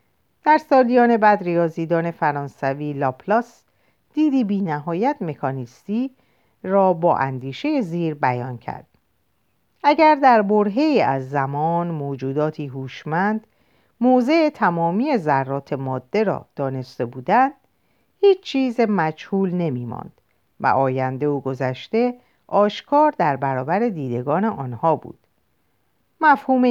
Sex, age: female, 50-69